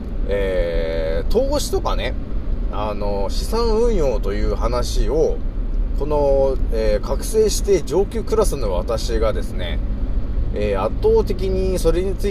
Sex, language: male, Japanese